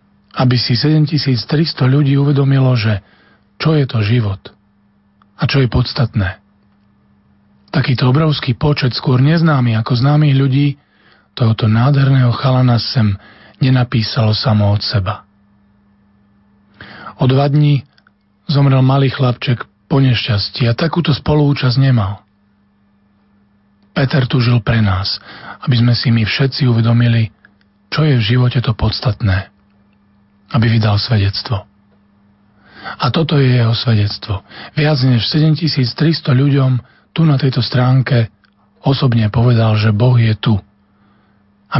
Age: 40-59